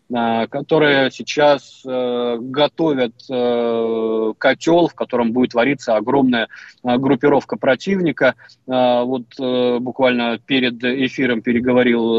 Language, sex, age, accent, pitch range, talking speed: Russian, male, 20-39, native, 120-135 Hz, 105 wpm